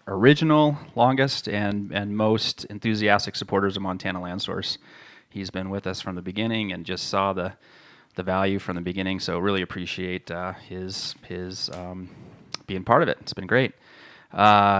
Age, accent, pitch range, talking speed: 30-49, American, 95-110 Hz, 170 wpm